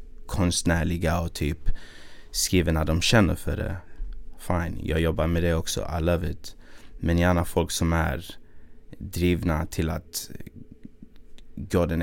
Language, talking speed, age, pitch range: Swedish, 140 wpm, 30-49, 85-95 Hz